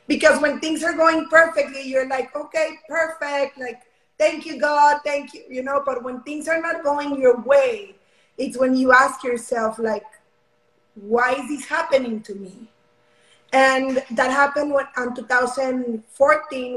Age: 20-39